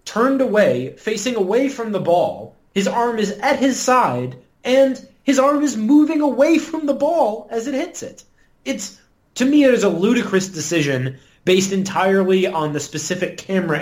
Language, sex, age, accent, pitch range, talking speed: English, male, 30-49, American, 140-195 Hz, 175 wpm